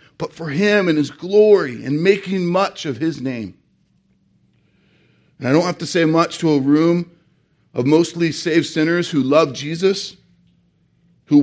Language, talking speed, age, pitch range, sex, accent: English, 160 wpm, 40-59, 120-160 Hz, male, American